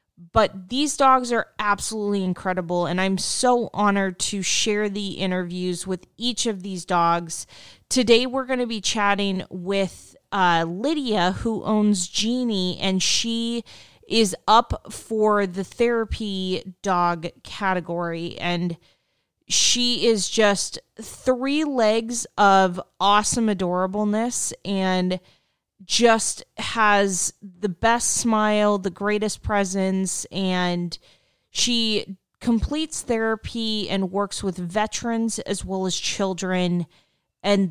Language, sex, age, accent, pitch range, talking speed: English, female, 30-49, American, 185-220 Hz, 115 wpm